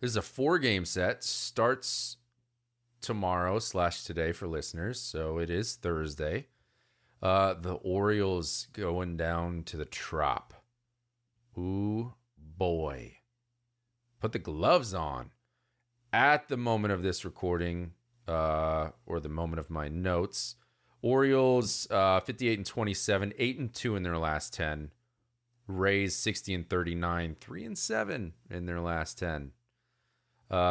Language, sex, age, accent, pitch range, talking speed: English, male, 30-49, American, 85-115 Hz, 130 wpm